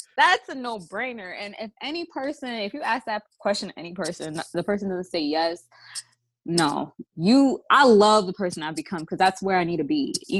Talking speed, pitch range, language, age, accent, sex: 200 wpm, 165-225 Hz, English, 20-39, American, female